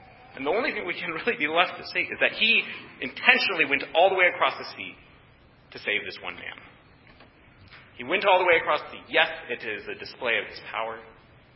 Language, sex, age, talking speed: English, male, 30-49, 225 wpm